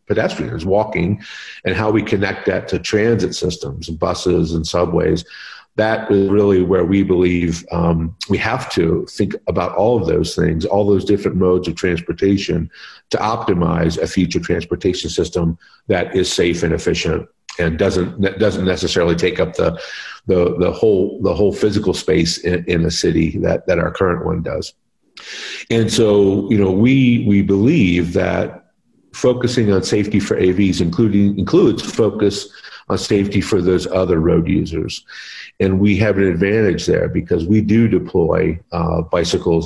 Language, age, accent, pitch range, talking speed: English, 50-69, American, 85-100 Hz, 160 wpm